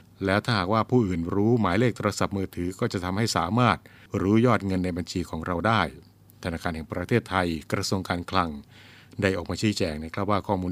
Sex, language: male, Thai